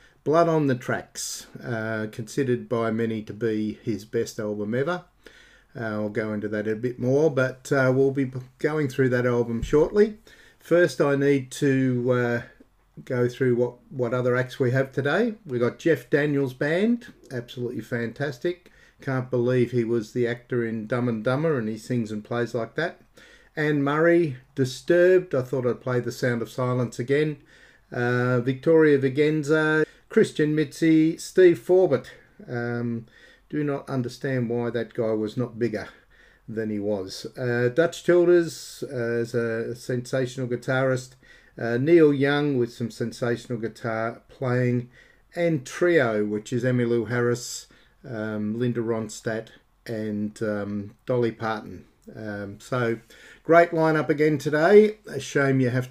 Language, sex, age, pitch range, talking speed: English, male, 50-69, 115-145 Hz, 150 wpm